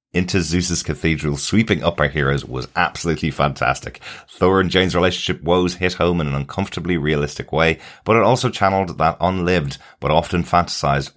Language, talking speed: English, 165 wpm